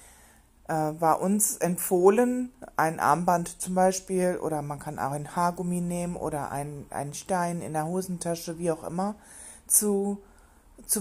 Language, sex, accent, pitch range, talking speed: German, female, German, 130-175 Hz, 135 wpm